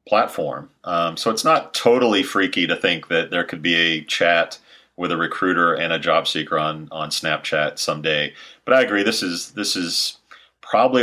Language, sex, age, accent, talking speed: English, male, 40-59, American, 180 wpm